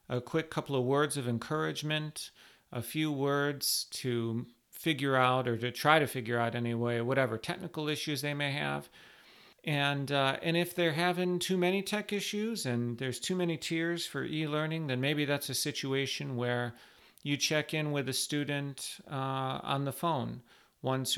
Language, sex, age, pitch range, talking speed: English, male, 40-59, 125-155 Hz, 170 wpm